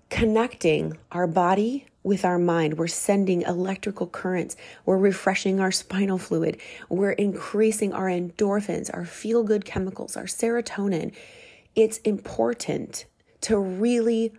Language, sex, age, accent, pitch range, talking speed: English, female, 30-49, American, 180-230 Hz, 115 wpm